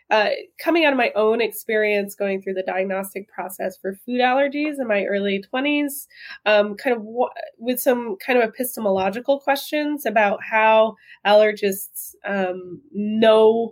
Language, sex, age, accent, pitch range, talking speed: English, female, 20-39, American, 190-250 Hz, 145 wpm